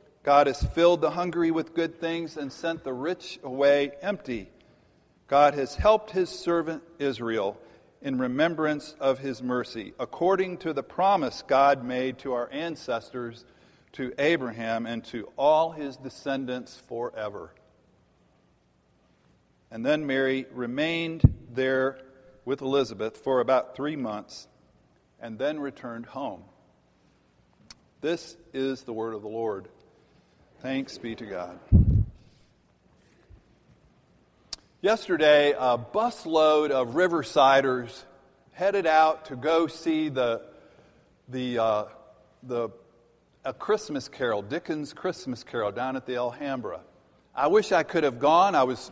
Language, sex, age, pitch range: English, male, 50-69, 120-165 Hz